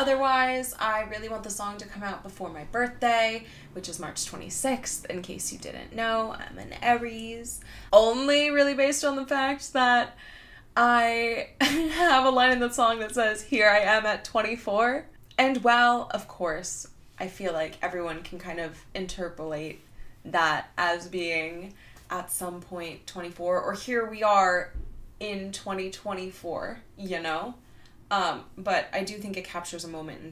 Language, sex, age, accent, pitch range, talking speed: English, female, 20-39, American, 160-235 Hz, 160 wpm